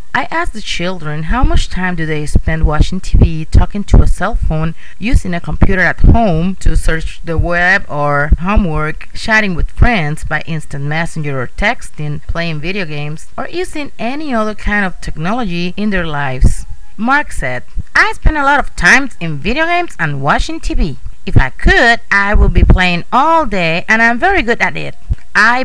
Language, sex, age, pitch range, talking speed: English, female, 30-49, 160-270 Hz, 185 wpm